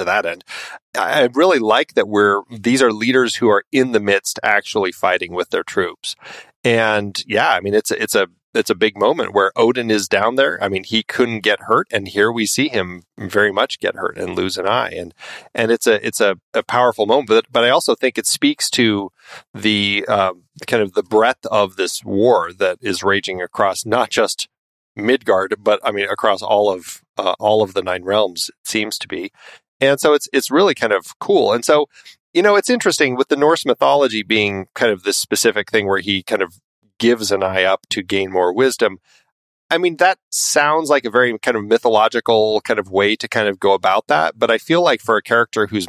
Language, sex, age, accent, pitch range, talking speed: English, male, 30-49, American, 100-130 Hz, 220 wpm